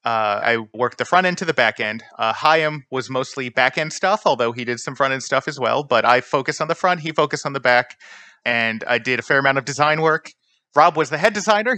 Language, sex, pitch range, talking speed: English, male, 125-165 Hz, 260 wpm